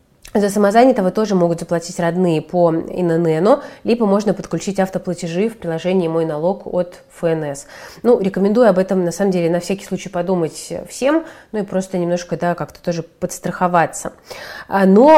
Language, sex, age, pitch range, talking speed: Russian, female, 30-49, 175-210 Hz, 155 wpm